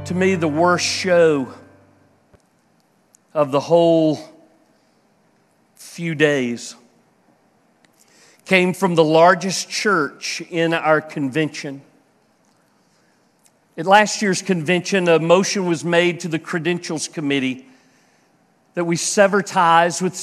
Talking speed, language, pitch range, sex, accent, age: 105 wpm, English, 155-190 Hz, male, American, 50-69